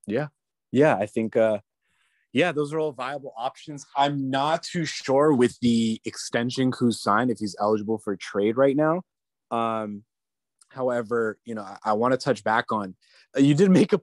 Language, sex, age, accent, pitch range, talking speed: English, male, 20-39, American, 100-130 Hz, 185 wpm